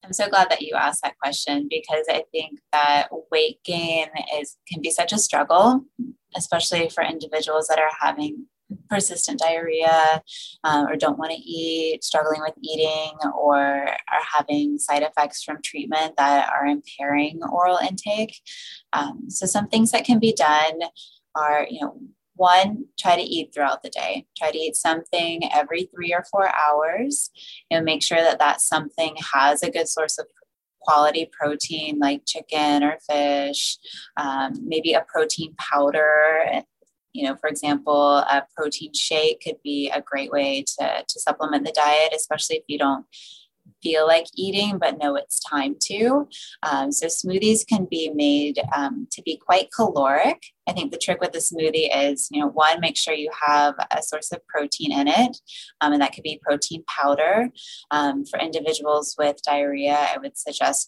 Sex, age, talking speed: female, 20-39, 170 wpm